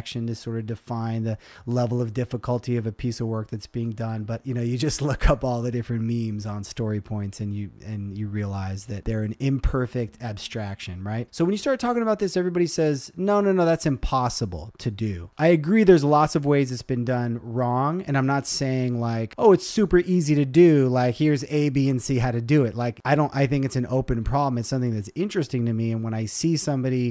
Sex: male